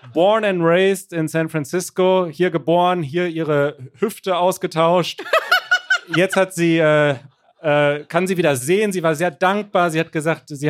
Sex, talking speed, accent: male, 165 wpm, German